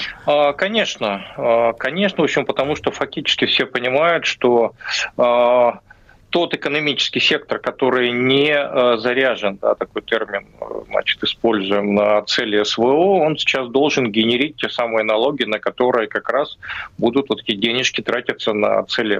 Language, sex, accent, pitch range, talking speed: Russian, male, native, 115-140 Hz, 130 wpm